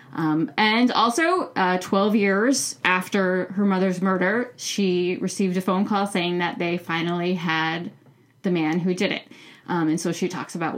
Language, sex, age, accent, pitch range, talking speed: English, female, 20-39, American, 175-205 Hz, 175 wpm